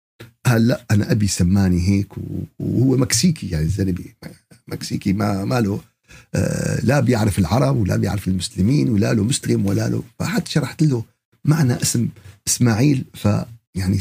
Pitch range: 100-130 Hz